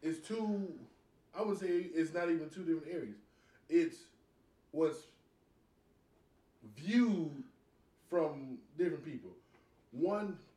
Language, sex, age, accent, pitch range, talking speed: English, male, 20-39, American, 120-160 Hz, 100 wpm